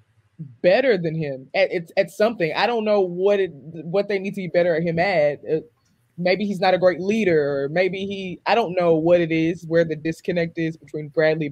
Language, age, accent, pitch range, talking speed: English, 20-39, American, 150-195 Hz, 225 wpm